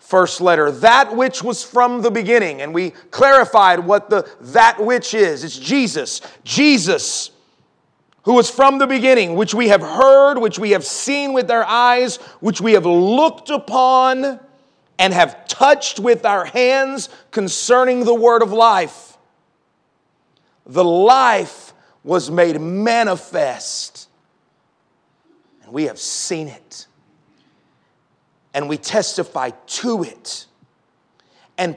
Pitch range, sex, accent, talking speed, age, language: 170-250 Hz, male, American, 125 wpm, 40-59, English